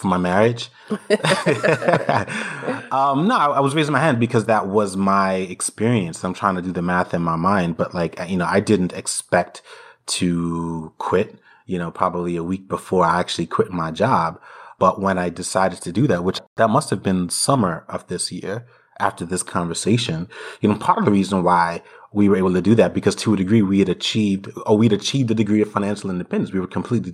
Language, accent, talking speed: English, American, 210 wpm